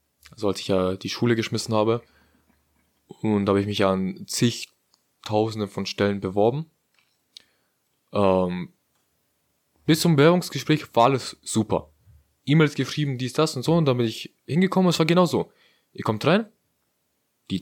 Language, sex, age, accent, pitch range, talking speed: German, male, 20-39, German, 100-140 Hz, 150 wpm